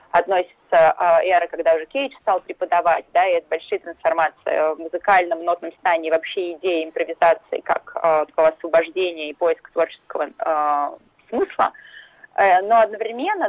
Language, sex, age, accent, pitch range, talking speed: Russian, female, 20-39, native, 165-230 Hz, 145 wpm